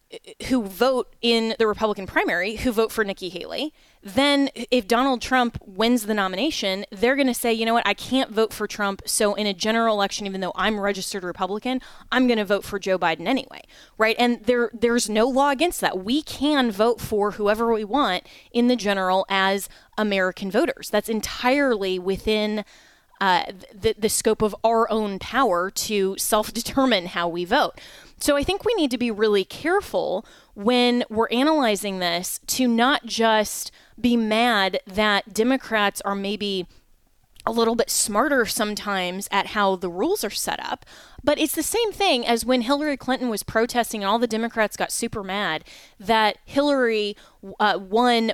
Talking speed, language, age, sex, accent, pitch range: 175 wpm, English, 20-39, female, American, 200-245 Hz